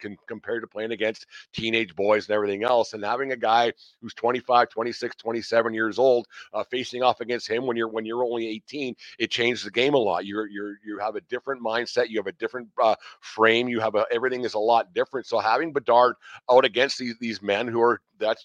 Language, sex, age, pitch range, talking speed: English, male, 50-69, 110-125 Hz, 220 wpm